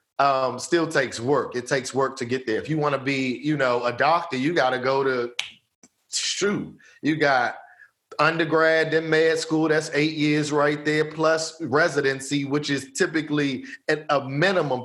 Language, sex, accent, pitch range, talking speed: English, male, American, 130-160 Hz, 180 wpm